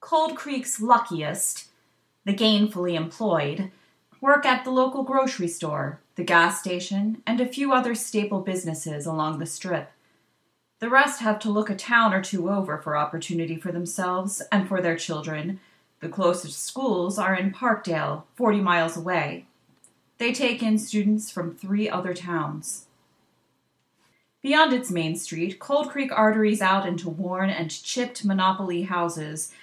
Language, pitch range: English, 165-215 Hz